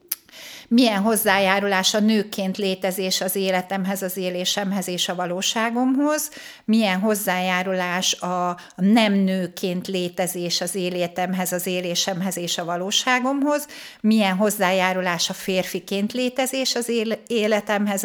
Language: Hungarian